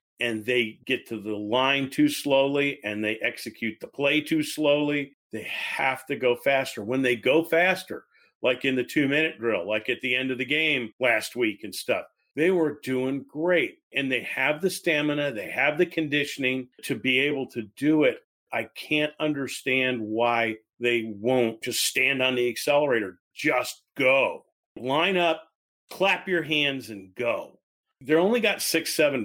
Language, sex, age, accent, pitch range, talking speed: English, male, 40-59, American, 125-155 Hz, 175 wpm